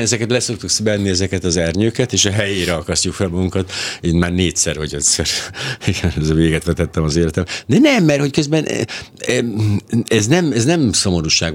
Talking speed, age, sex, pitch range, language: 160 wpm, 60-79, male, 80-110 Hz, Hungarian